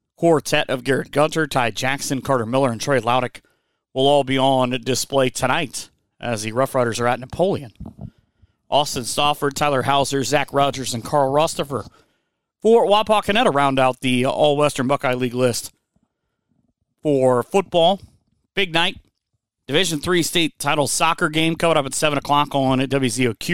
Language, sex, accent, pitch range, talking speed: English, male, American, 120-145 Hz, 150 wpm